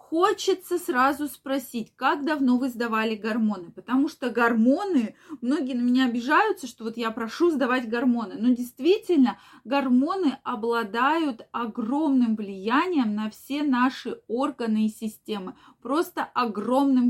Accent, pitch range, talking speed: native, 220-285 Hz, 125 wpm